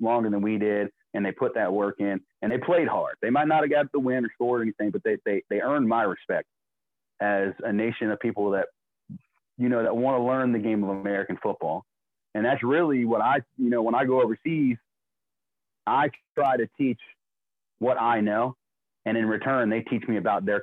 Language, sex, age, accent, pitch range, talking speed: English, male, 30-49, American, 100-125 Hz, 220 wpm